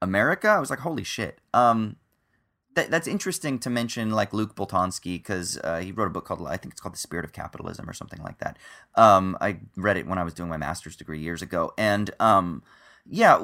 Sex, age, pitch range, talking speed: male, 30-49, 90-115 Hz, 225 wpm